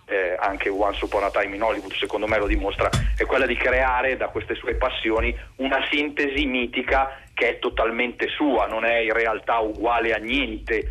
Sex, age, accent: male, 40-59, native